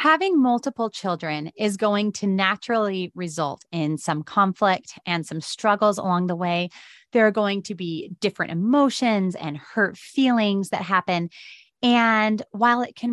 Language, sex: English, female